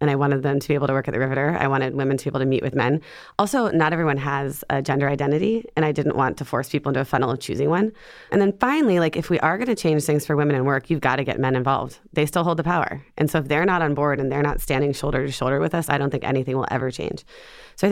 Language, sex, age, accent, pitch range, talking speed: English, female, 30-49, American, 140-170 Hz, 310 wpm